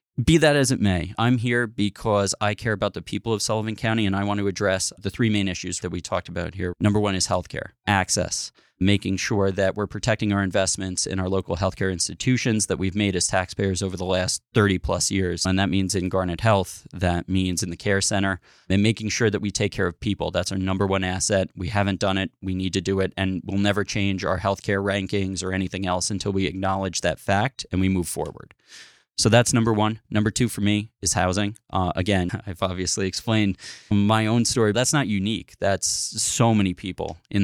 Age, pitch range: 30-49, 95-105 Hz